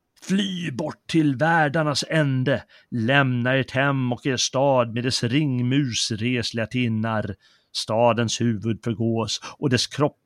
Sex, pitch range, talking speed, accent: male, 110-125 Hz, 125 wpm, native